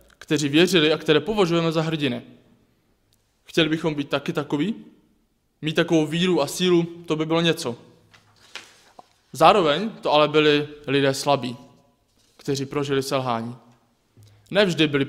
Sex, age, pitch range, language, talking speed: male, 20-39, 135-155 Hz, Czech, 125 wpm